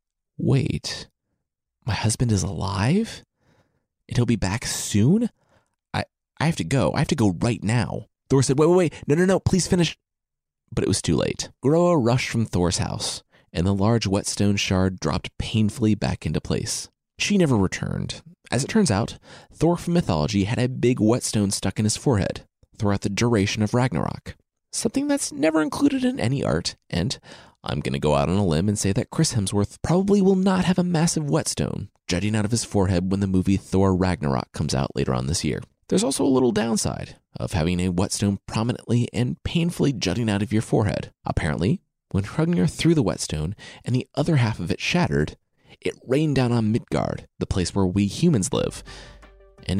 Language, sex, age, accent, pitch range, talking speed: English, male, 30-49, American, 95-145 Hz, 195 wpm